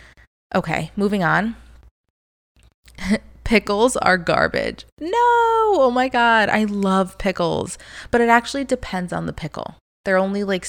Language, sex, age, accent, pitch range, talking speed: English, female, 20-39, American, 160-210 Hz, 130 wpm